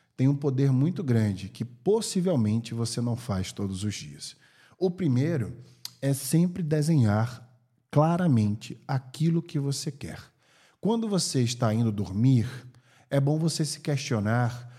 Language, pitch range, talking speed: Portuguese, 115-150 Hz, 135 wpm